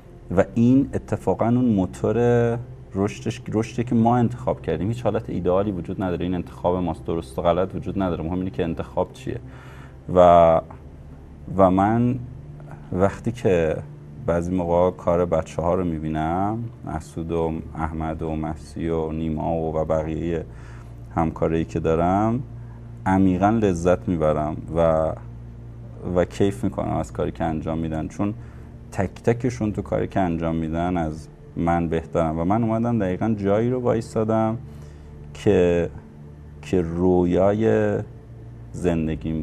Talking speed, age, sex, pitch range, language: 130 wpm, 30-49, male, 80-110 Hz, Persian